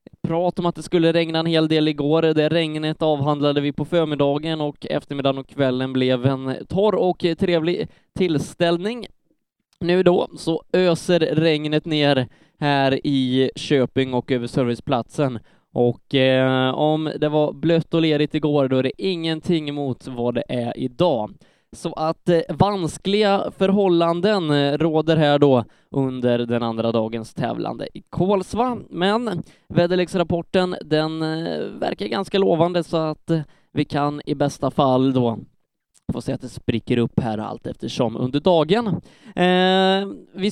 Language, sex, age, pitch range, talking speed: Swedish, male, 20-39, 140-175 Hz, 140 wpm